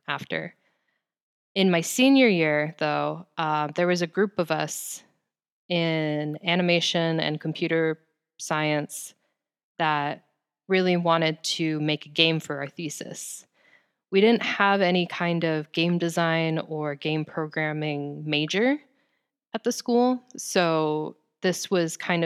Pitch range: 150-180 Hz